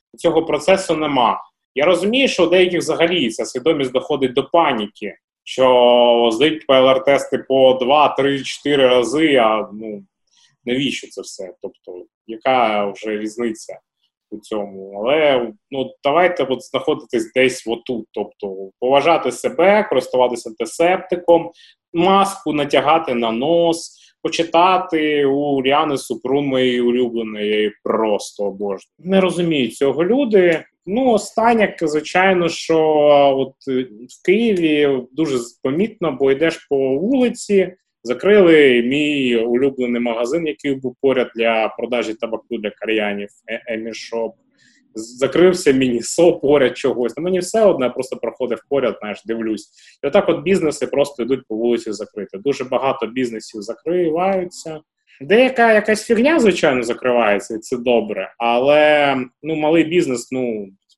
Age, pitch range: 20-39, 120-170 Hz